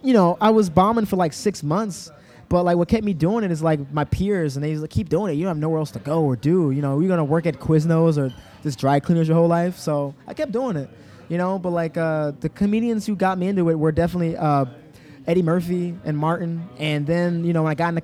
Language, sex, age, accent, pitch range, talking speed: English, male, 20-39, American, 145-180 Hz, 270 wpm